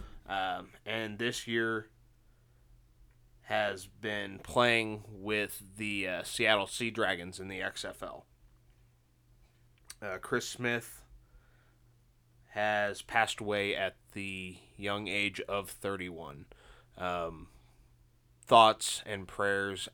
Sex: male